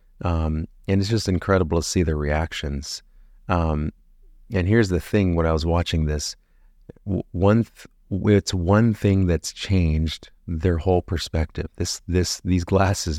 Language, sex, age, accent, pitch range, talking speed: English, male, 30-49, American, 80-95 Hz, 145 wpm